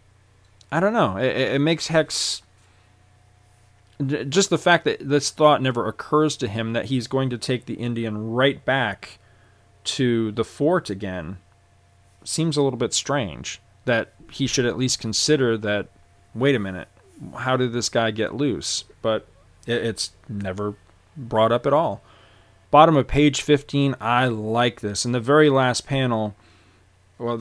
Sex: male